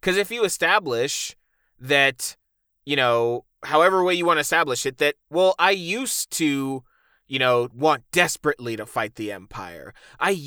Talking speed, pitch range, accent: 160 wpm, 125-185 Hz, American